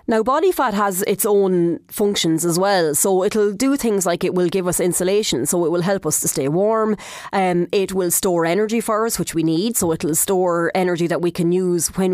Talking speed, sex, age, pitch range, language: 225 wpm, female, 30-49, 170-205 Hz, English